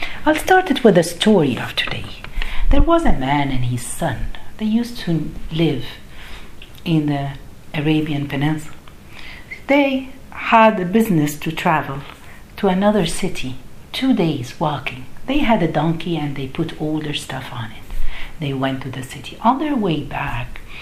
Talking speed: 160 wpm